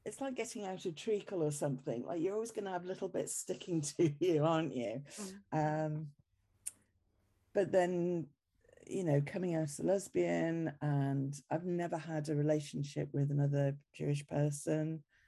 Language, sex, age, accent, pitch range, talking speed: English, female, 50-69, British, 120-160 Hz, 160 wpm